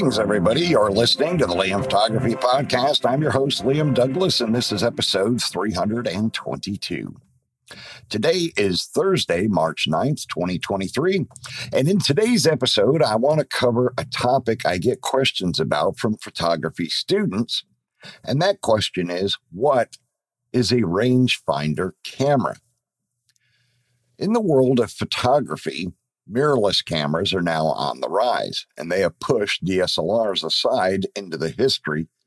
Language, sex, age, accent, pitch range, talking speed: English, male, 50-69, American, 100-130 Hz, 130 wpm